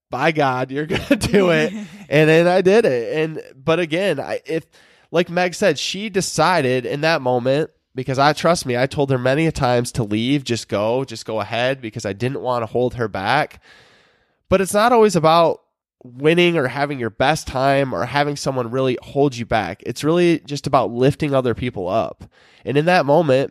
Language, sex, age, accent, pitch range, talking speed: English, male, 20-39, American, 120-150 Hz, 200 wpm